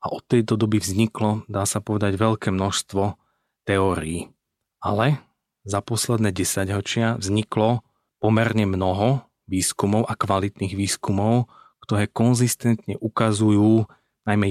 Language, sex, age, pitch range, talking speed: Slovak, male, 40-59, 100-110 Hz, 110 wpm